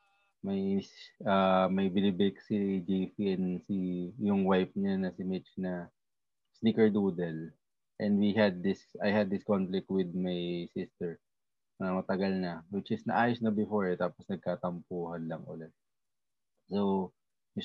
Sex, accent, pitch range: male, Filipino, 90-110 Hz